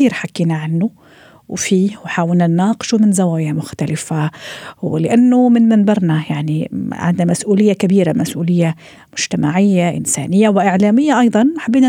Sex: female